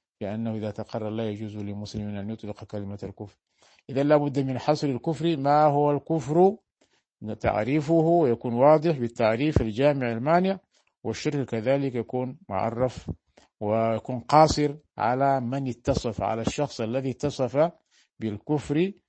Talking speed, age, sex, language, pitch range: 120 wpm, 50-69, male, Arabic, 110-140 Hz